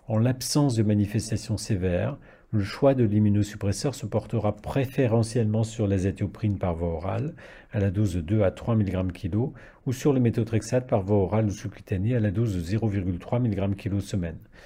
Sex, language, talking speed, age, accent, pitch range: male, French, 165 wpm, 50-69, French, 100-115 Hz